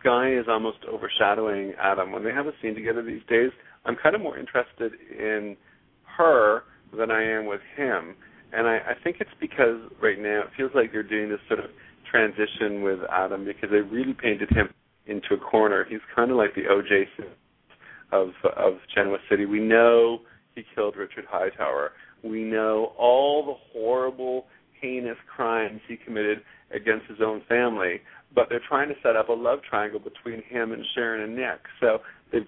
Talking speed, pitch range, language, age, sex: 180 wpm, 105-125 Hz, English, 40-59, male